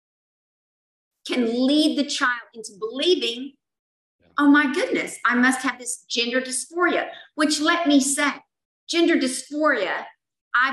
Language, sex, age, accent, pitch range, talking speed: English, female, 50-69, American, 235-300 Hz, 125 wpm